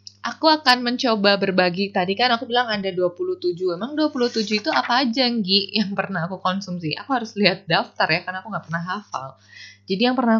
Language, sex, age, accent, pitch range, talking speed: Indonesian, female, 20-39, native, 170-215 Hz, 190 wpm